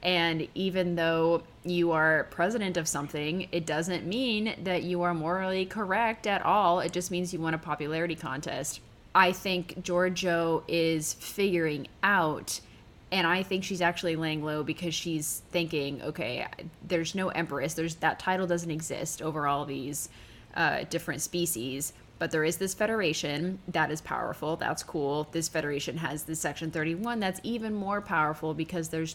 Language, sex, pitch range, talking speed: English, female, 155-180 Hz, 165 wpm